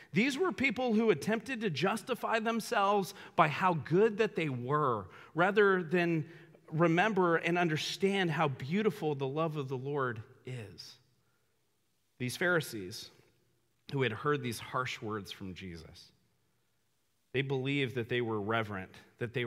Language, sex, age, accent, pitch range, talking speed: English, male, 40-59, American, 115-185 Hz, 140 wpm